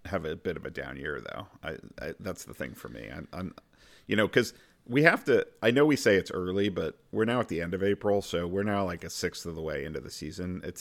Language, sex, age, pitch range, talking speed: English, male, 40-59, 85-105 Hz, 270 wpm